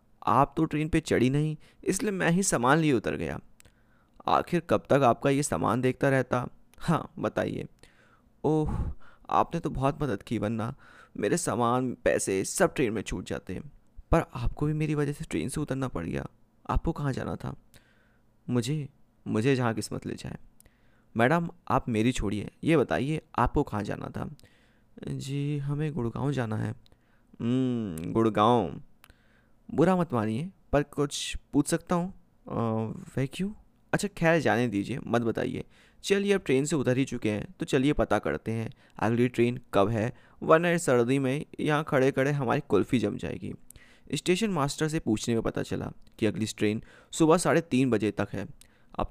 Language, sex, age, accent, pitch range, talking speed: Hindi, male, 30-49, native, 110-150 Hz, 165 wpm